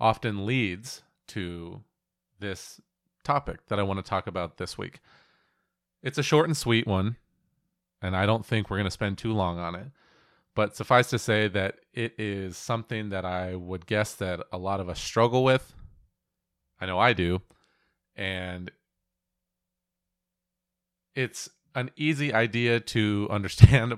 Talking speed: 155 wpm